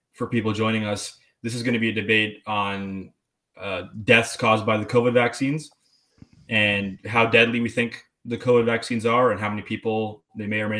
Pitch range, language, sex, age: 105-120 Hz, English, male, 20-39